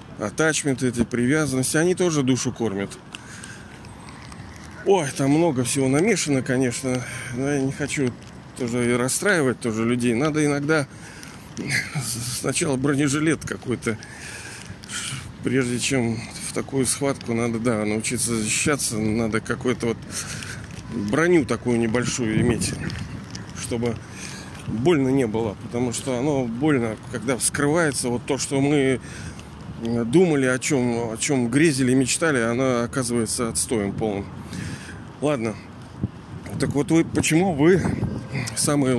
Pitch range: 115-145 Hz